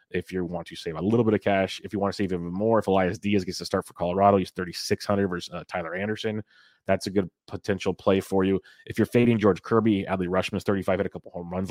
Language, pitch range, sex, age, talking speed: English, 90-100 Hz, male, 30-49, 260 wpm